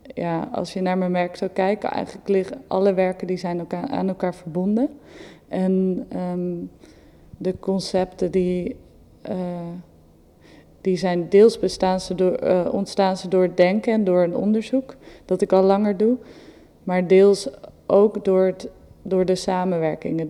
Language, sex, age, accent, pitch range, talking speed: Dutch, female, 20-39, Dutch, 175-200 Hz, 150 wpm